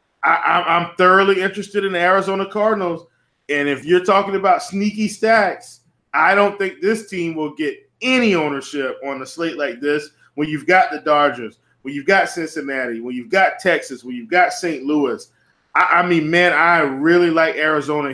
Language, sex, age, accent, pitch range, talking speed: English, male, 20-39, American, 155-190 Hz, 180 wpm